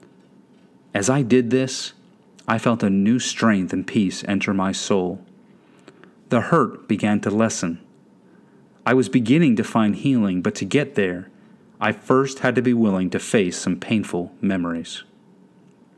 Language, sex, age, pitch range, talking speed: English, male, 40-59, 105-145 Hz, 150 wpm